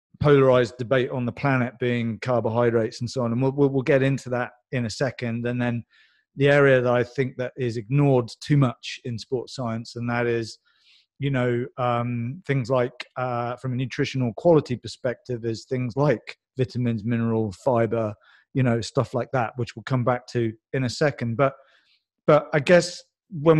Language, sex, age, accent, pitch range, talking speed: English, male, 30-49, British, 120-140 Hz, 185 wpm